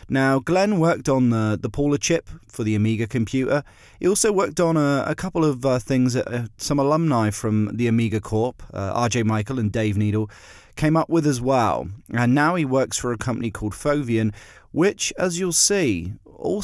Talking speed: 200 wpm